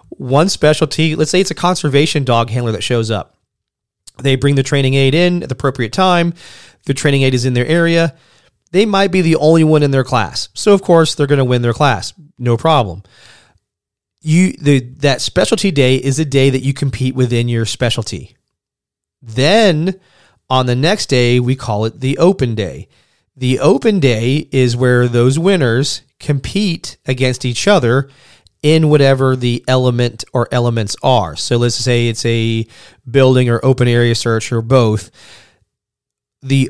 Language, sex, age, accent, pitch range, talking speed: English, male, 30-49, American, 120-150 Hz, 175 wpm